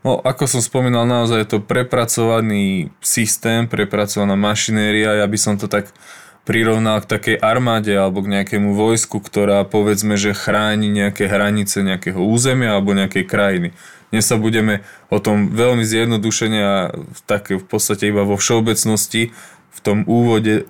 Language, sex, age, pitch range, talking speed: Slovak, male, 20-39, 100-110 Hz, 150 wpm